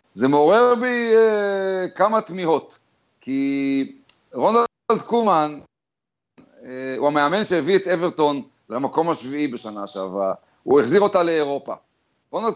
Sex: male